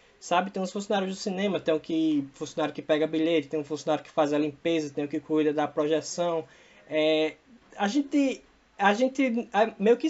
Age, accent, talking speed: 20-39, Brazilian, 210 wpm